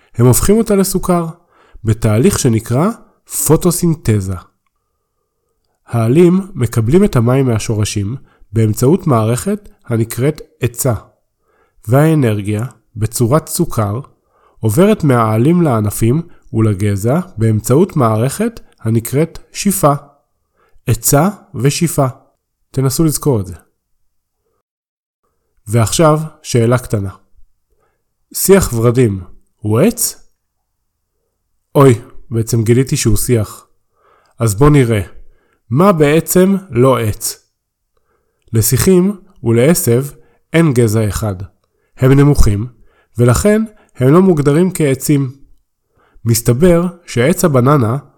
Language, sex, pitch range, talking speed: Hebrew, male, 115-165 Hz, 85 wpm